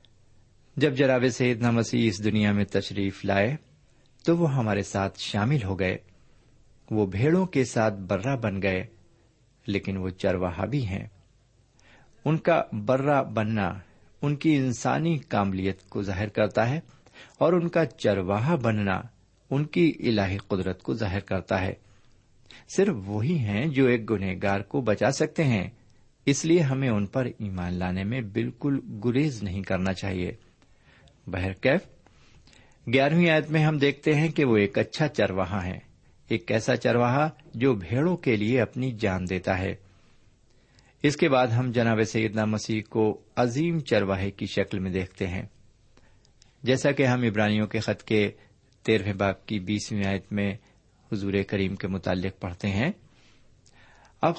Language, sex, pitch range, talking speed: Urdu, male, 100-130 Hz, 150 wpm